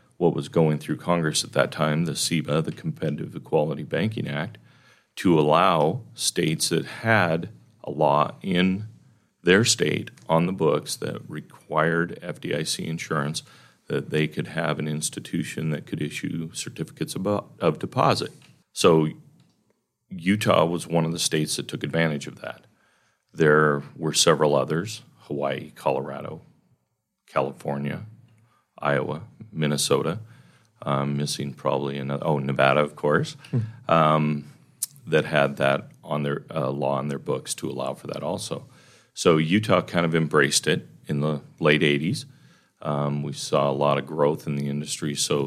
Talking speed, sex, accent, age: 145 wpm, male, American, 40-59